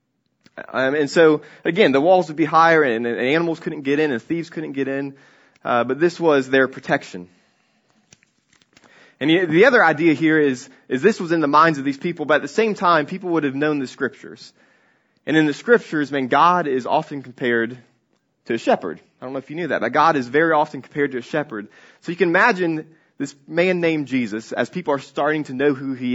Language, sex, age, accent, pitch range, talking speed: English, male, 20-39, American, 120-155 Hz, 225 wpm